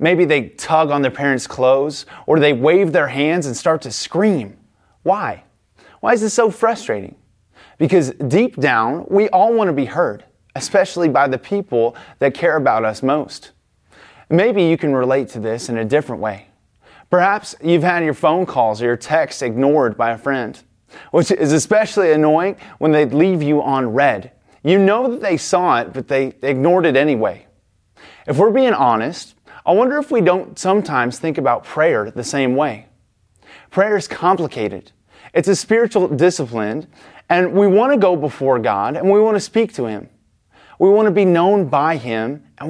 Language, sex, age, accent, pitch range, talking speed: English, male, 30-49, American, 130-195 Hz, 180 wpm